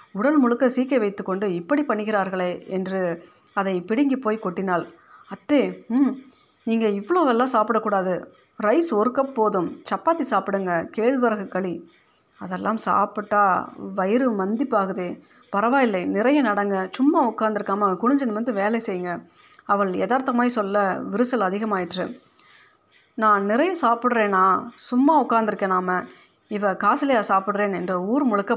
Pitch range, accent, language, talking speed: 195-250 Hz, native, Tamil, 115 wpm